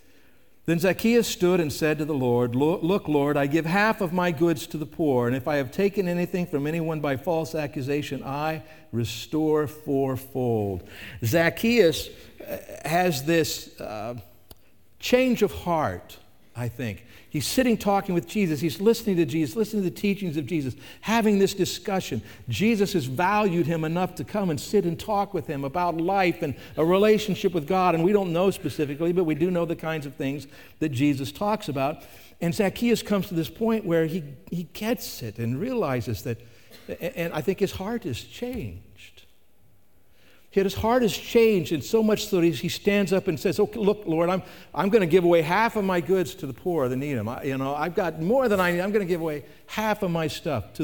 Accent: American